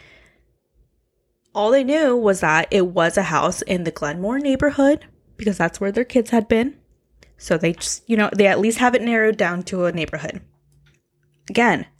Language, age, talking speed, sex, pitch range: English, 10-29, 180 wpm, female, 170-225 Hz